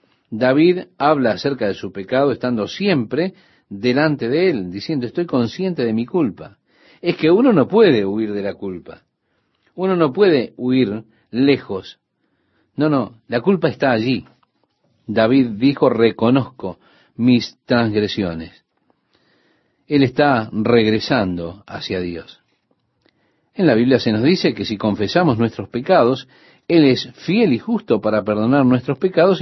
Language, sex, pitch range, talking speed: Spanish, male, 110-155 Hz, 135 wpm